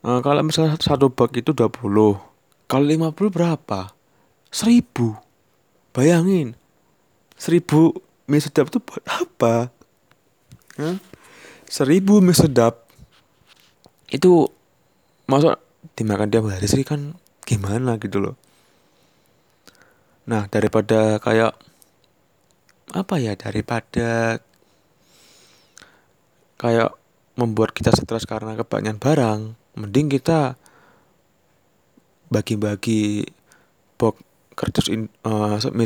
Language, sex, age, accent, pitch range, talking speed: Indonesian, male, 20-39, native, 110-145 Hz, 85 wpm